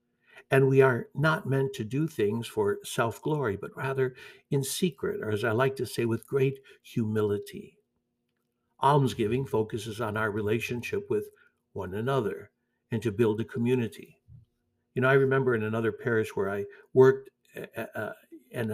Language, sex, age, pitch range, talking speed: English, male, 60-79, 110-135 Hz, 155 wpm